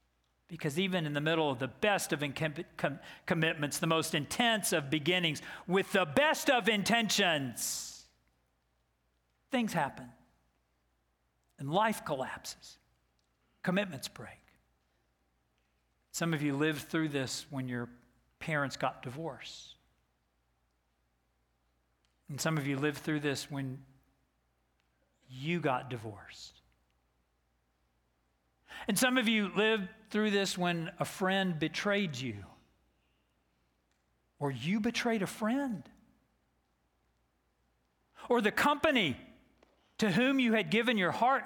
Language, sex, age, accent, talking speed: English, male, 50-69, American, 115 wpm